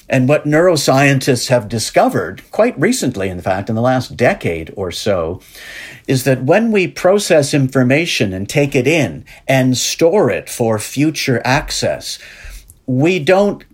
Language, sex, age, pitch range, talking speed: English, male, 50-69, 110-145 Hz, 145 wpm